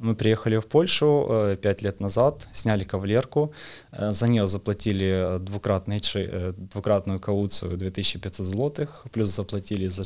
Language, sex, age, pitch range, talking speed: Russian, male, 20-39, 95-110 Hz, 115 wpm